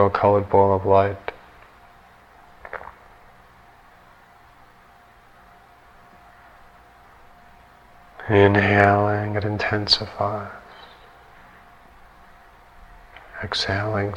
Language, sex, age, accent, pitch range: English, male, 50-69, American, 80-105 Hz